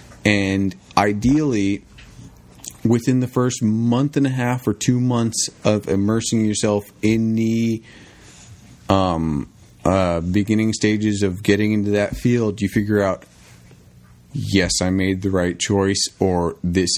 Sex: male